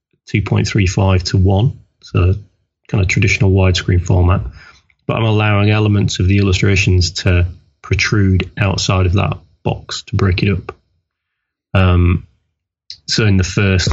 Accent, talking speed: British, 130 wpm